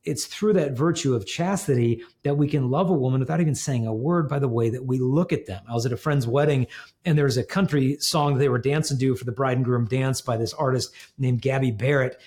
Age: 40-59